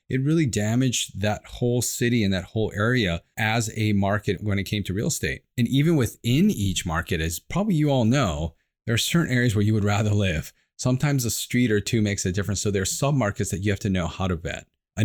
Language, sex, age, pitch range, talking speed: English, male, 30-49, 90-125 Hz, 240 wpm